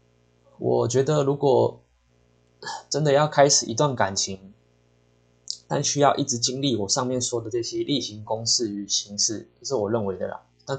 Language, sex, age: Chinese, male, 20-39